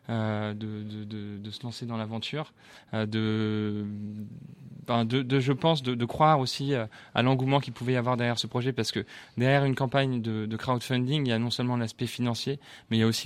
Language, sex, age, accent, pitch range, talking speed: French, male, 20-39, French, 110-130 Hz, 215 wpm